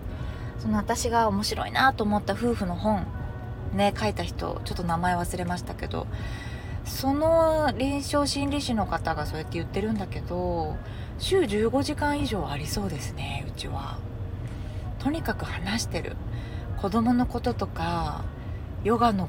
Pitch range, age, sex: 100-150 Hz, 20-39, female